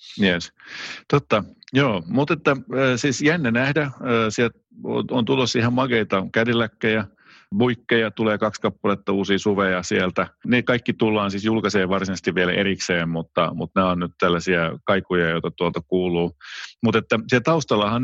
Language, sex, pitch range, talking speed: Finnish, male, 95-115 Hz, 130 wpm